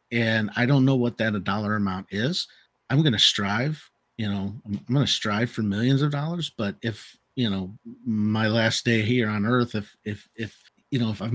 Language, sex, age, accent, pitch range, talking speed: English, male, 50-69, American, 95-110 Hz, 215 wpm